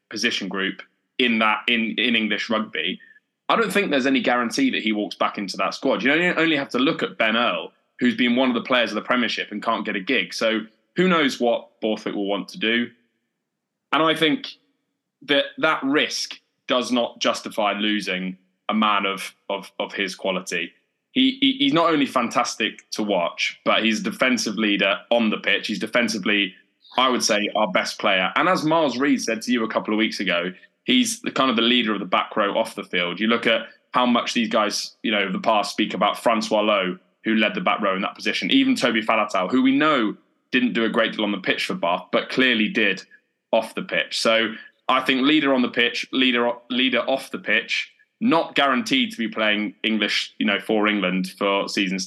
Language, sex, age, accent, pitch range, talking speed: English, male, 20-39, British, 100-140 Hz, 215 wpm